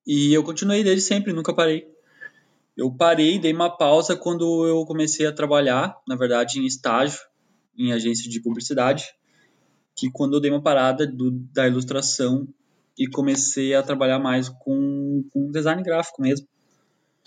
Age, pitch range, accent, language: 20-39, 130-160 Hz, Brazilian, Portuguese